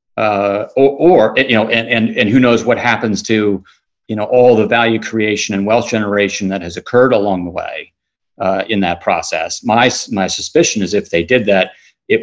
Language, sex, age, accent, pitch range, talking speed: English, male, 40-59, American, 95-115 Hz, 200 wpm